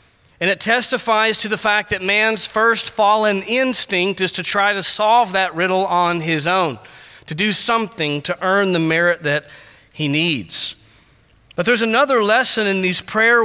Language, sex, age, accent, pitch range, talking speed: English, male, 40-59, American, 145-215 Hz, 170 wpm